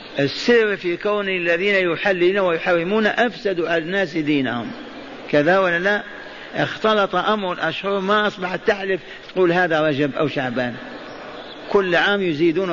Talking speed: 125 wpm